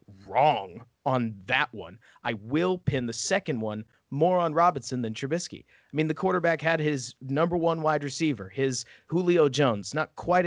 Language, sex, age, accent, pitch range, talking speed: English, male, 30-49, American, 125-165 Hz, 170 wpm